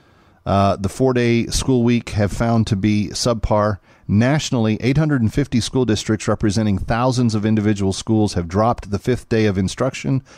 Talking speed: 150 wpm